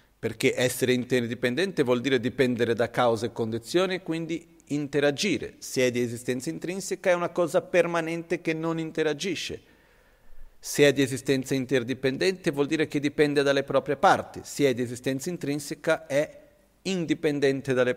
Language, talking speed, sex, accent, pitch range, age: Italian, 145 wpm, male, native, 120-160 Hz, 50-69